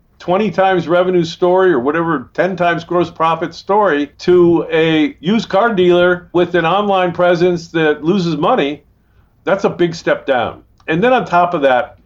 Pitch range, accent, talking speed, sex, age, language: 140-185 Hz, American, 170 wpm, male, 50-69, English